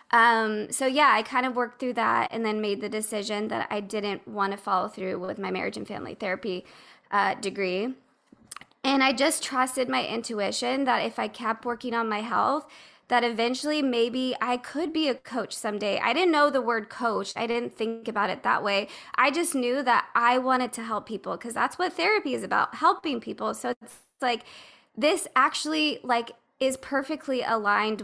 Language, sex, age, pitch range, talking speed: English, female, 20-39, 205-255 Hz, 195 wpm